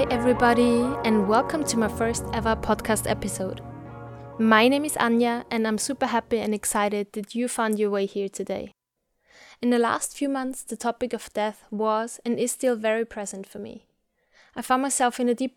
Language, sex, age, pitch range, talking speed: English, female, 20-39, 215-250 Hz, 190 wpm